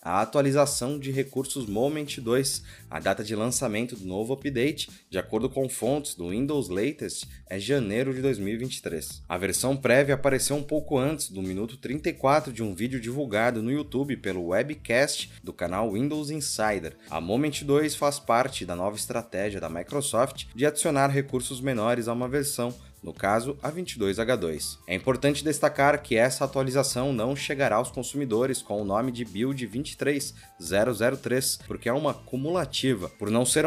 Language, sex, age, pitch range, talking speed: Portuguese, male, 20-39, 110-140 Hz, 160 wpm